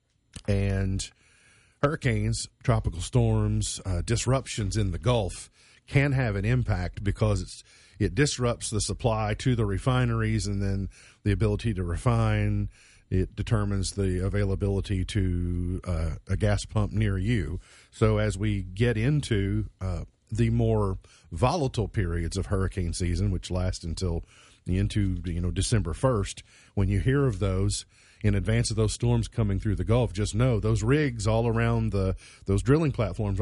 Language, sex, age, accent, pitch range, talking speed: English, male, 40-59, American, 95-120 Hz, 150 wpm